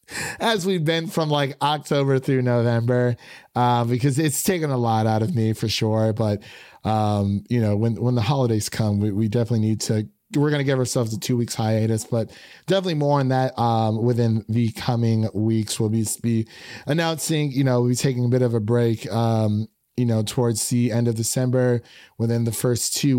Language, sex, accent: English, male, American